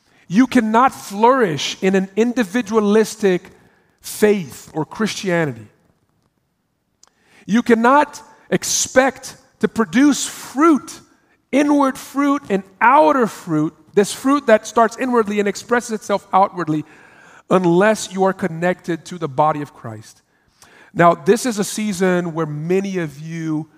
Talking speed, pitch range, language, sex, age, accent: 120 wpm, 170-220 Hz, English, male, 40-59, American